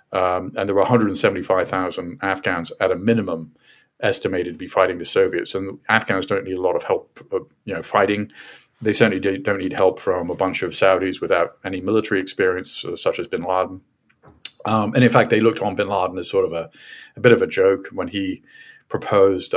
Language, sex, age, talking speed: English, male, 40-59, 220 wpm